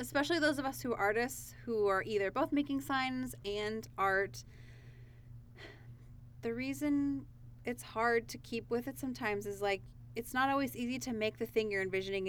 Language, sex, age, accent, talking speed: English, female, 20-39, American, 175 wpm